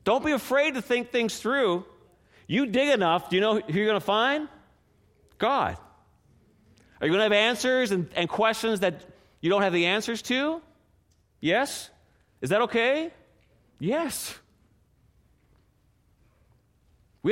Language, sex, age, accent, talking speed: English, male, 30-49, American, 140 wpm